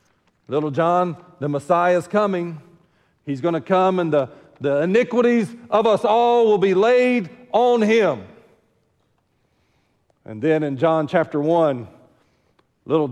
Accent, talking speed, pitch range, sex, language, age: American, 135 wpm, 155-230 Hz, male, English, 40-59